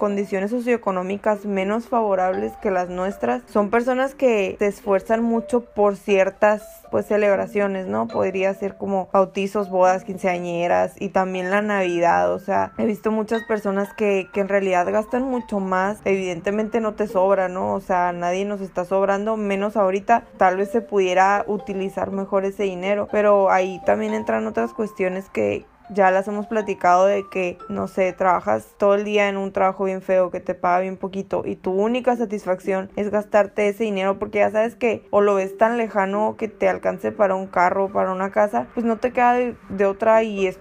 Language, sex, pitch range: Spanish, female, 190-215 Hz